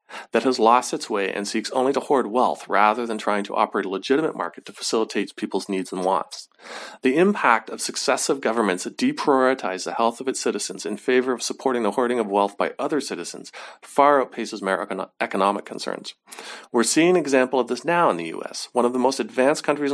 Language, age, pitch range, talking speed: English, 40-59, 110-155 Hz, 210 wpm